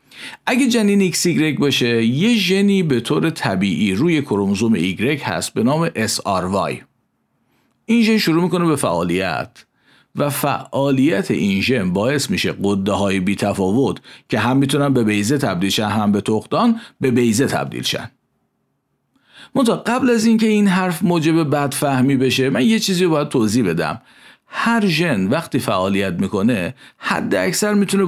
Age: 50-69